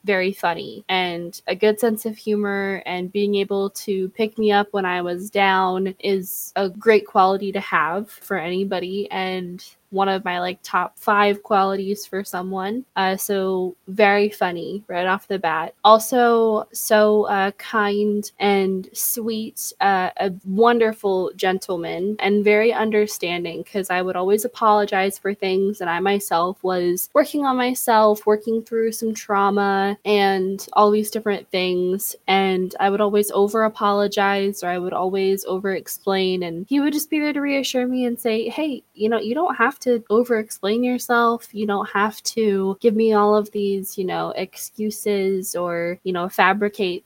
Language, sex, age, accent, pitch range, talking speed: English, female, 20-39, American, 190-215 Hz, 160 wpm